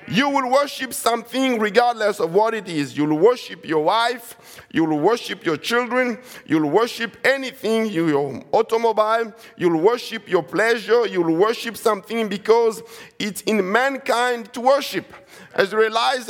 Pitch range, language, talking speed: 200-245 Hz, English, 135 wpm